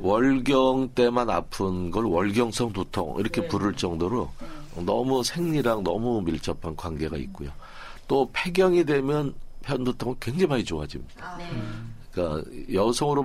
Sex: male